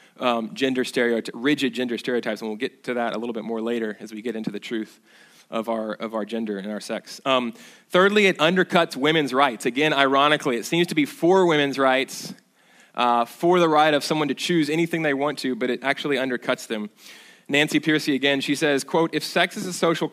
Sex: male